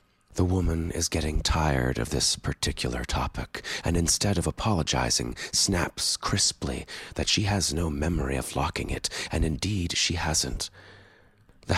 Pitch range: 70-85 Hz